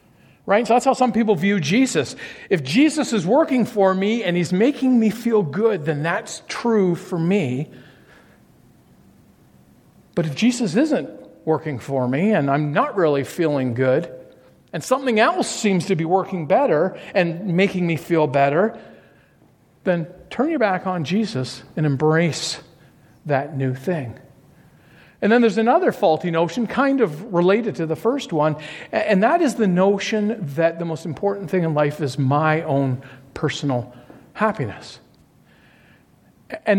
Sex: male